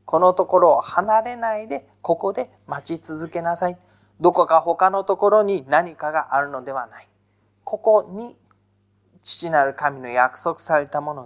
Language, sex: Japanese, male